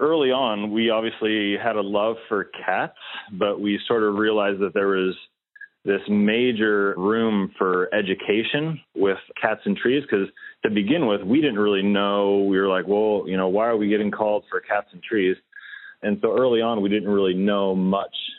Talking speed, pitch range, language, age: 190 wpm, 100-135 Hz, English, 30-49